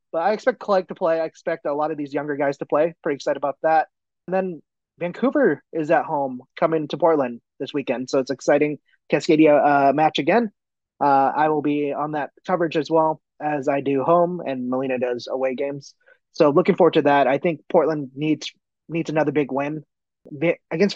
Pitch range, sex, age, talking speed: 135-170 Hz, male, 20-39, 205 wpm